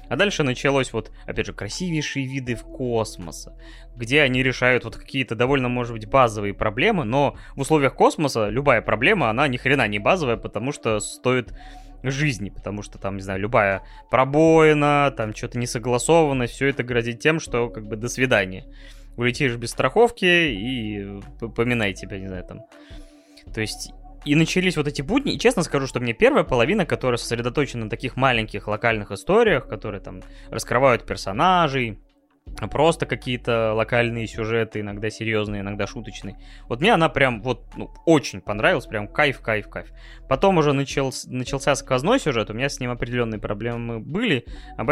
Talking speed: 160 wpm